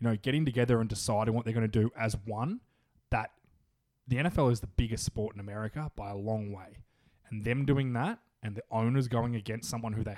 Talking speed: 225 wpm